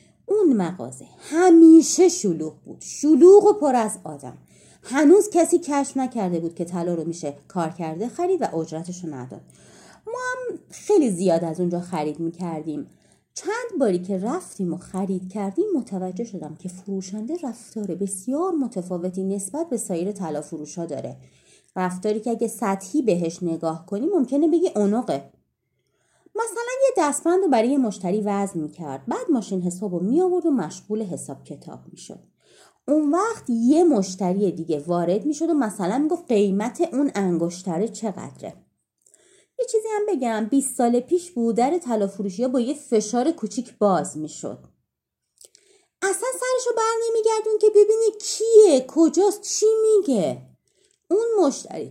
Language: Persian